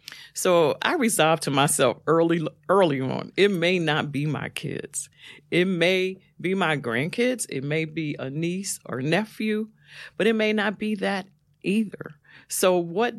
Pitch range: 145-180 Hz